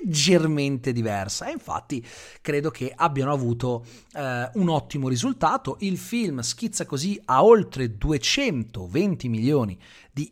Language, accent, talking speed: Italian, native, 115 wpm